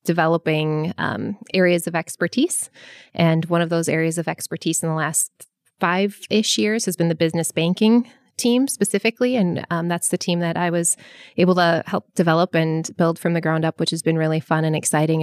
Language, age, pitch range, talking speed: English, 20-39, 160-190 Hz, 195 wpm